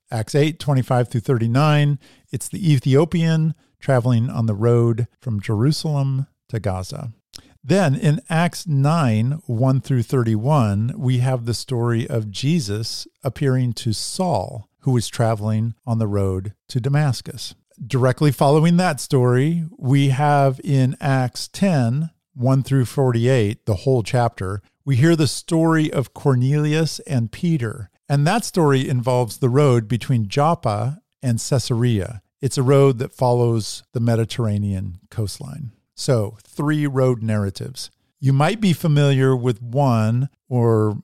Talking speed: 135 wpm